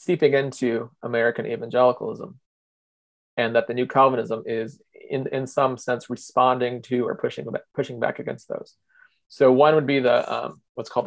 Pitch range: 120-130 Hz